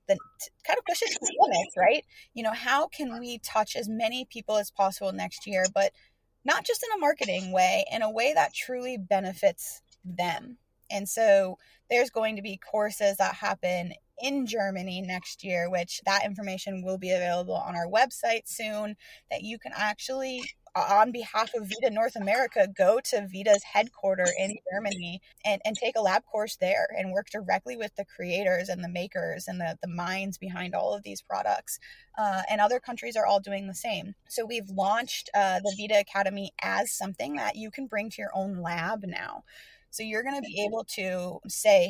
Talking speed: 190 wpm